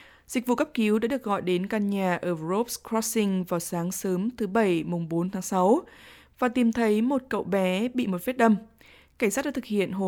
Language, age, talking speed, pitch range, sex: Vietnamese, 20-39, 225 wpm, 190-240 Hz, female